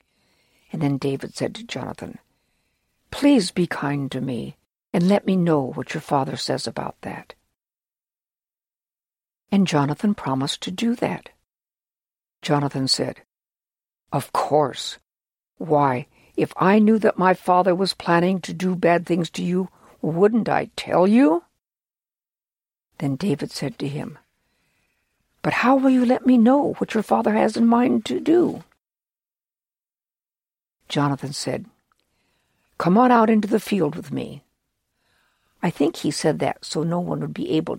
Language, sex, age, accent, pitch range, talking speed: English, female, 60-79, American, 155-225 Hz, 145 wpm